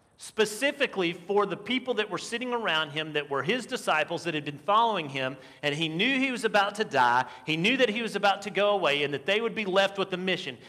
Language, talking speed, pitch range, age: English, 245 wpm, 180-235 Hz, 40-59